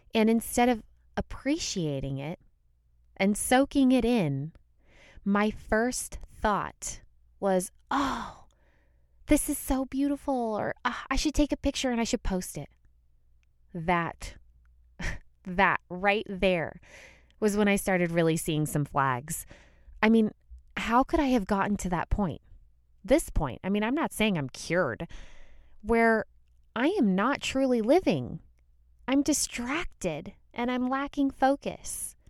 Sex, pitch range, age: female, 170-245 Hz, 20-39